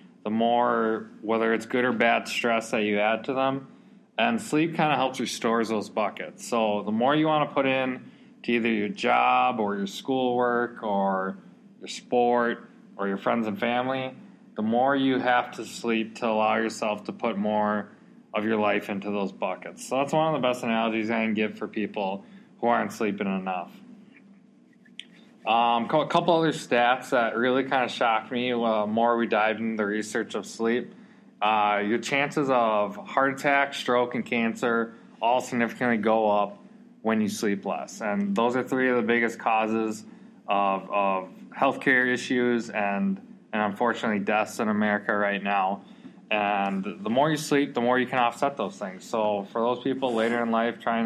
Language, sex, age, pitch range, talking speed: English, male, 20-39, 110-130 Hz, 185 wpm